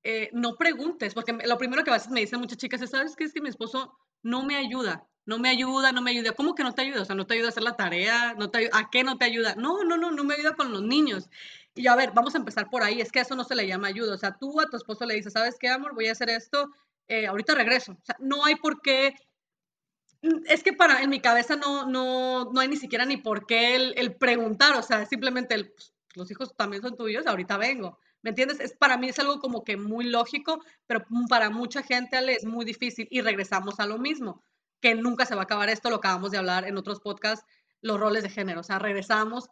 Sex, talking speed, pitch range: female, 265 wpm, 210-260 Hz